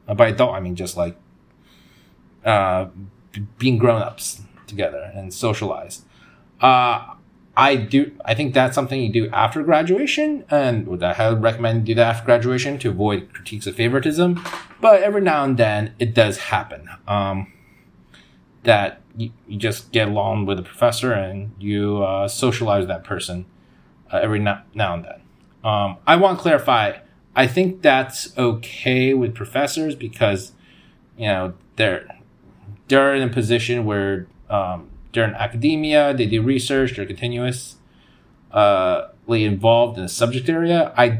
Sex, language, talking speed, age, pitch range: male, English, 155 wpm, 30-49, 100-125 Hz